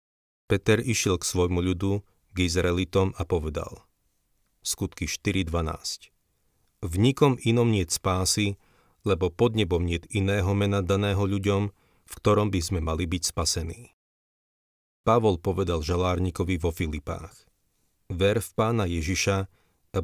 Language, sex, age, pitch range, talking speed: Slovak, male, 40-59, 85-100 Hz, 120 wpm